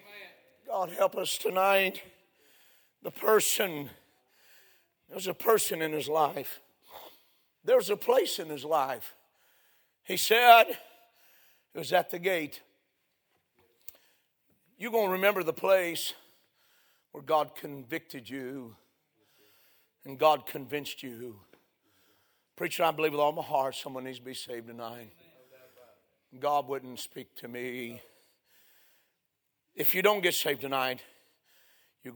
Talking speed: 120 wpm